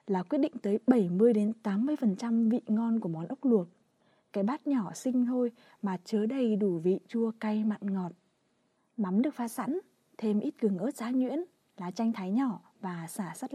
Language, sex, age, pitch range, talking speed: Vietnamese, female, 20-39, 195-250 Hz, 195 wpm